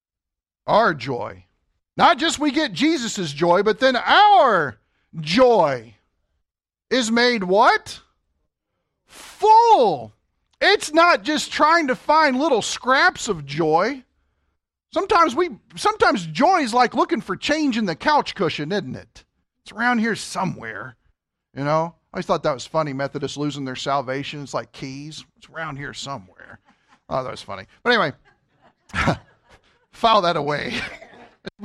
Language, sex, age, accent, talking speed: English, male, 50-69, American, 140 wpm